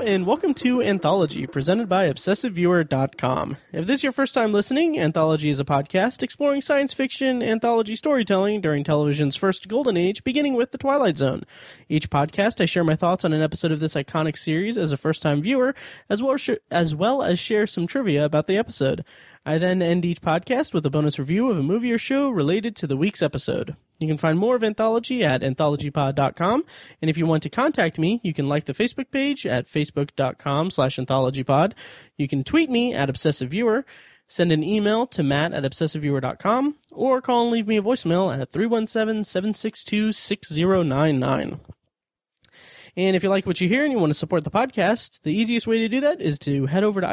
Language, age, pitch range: English, 20-39, 150-230 Hz